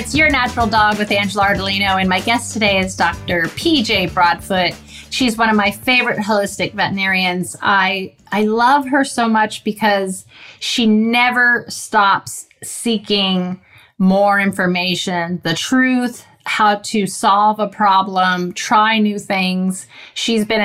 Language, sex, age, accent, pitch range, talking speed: English, female, 30-49, American, 185-220 Hz, 135 wpm